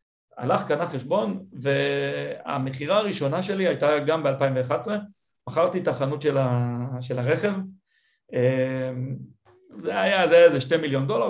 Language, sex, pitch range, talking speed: Hebrew, male, 135-170 Hz, 115 wpm